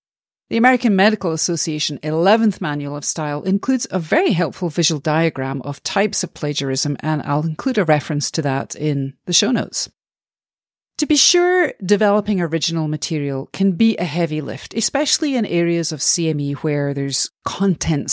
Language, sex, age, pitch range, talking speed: English, female, 40-59, 140-195 Hz, 160 wpm